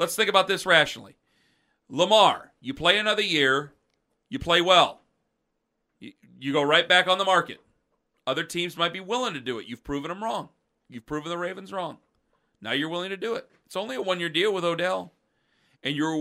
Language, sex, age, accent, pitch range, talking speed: English, male, 40-59, American, 145-185 Hz, 195 wpm